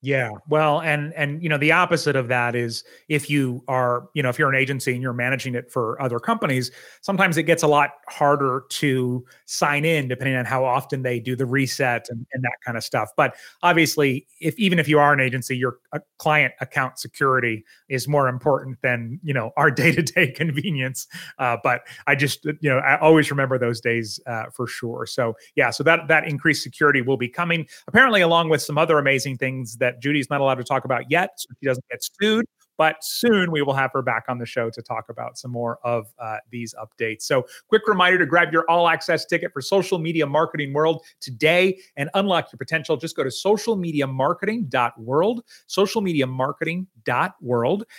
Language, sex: English, male